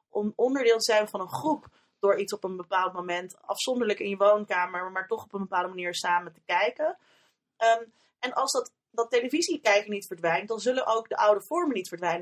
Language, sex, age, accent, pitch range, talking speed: Dutch, female, 30-49, Dutch, 185-230 Hz, 205 wpm